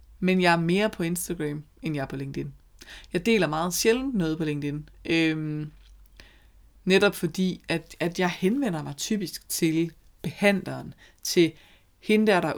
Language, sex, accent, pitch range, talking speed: Danish, female, native, 145-180 Hz, 155 wpm